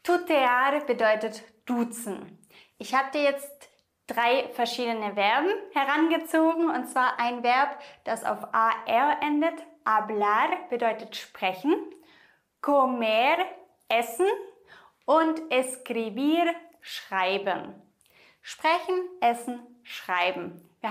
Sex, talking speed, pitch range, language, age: female, 90 wpm, 230-315 Hz, English, 20-39